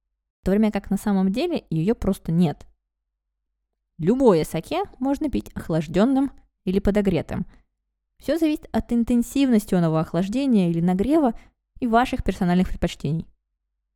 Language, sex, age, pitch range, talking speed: Russian, female, 20-39, 150-230 Hz, 125 wpm